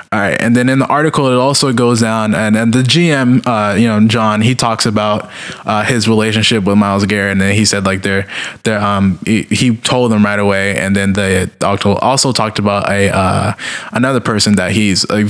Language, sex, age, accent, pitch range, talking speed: English, male, 20-39, American, 105-125 Hz, 210 wpm